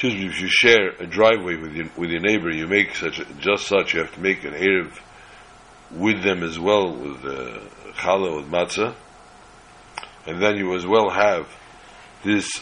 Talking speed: 180 wpm